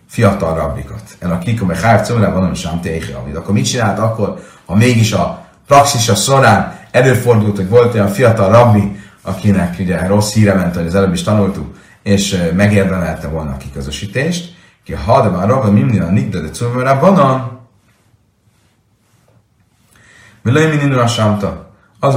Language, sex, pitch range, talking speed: Hungarian, male, 100-120 Hz, 125 wpm